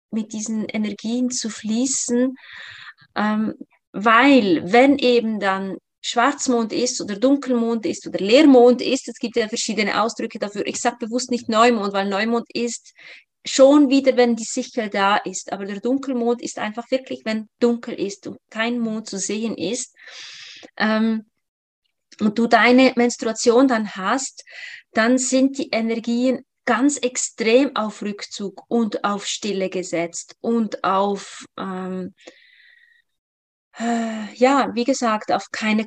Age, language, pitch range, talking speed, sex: 20-39, German, 215-250 Hz, 135 wpm, female